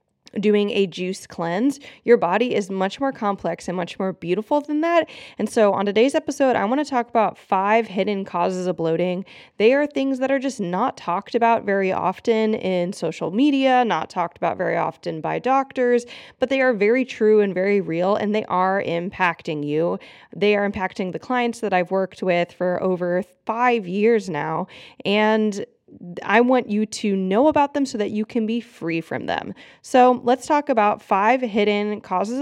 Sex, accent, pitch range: female, American, 185-240 Hz